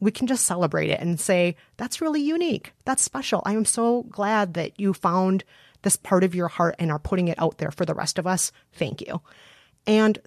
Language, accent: English, American